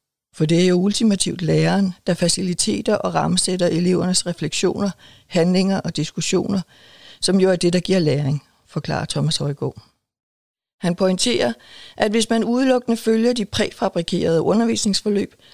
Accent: native